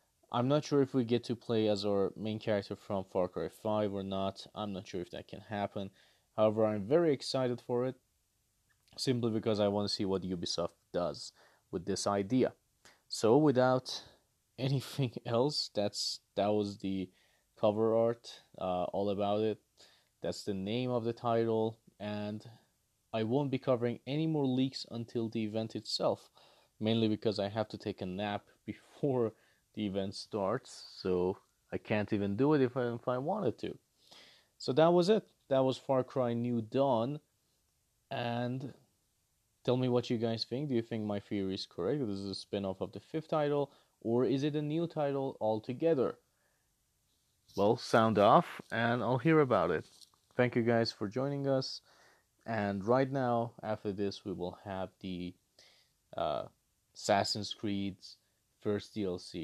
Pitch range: 100-125 Hz